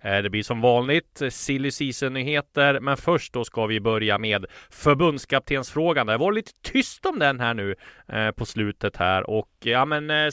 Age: 30-49